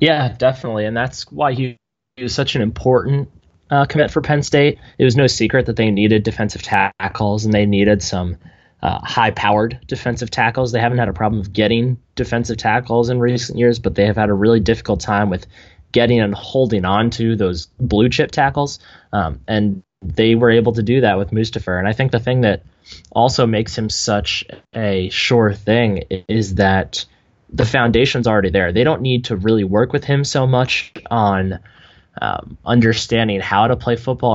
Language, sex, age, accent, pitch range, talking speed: English, male, 20-39, American, 100-120 Hz, 190 wpm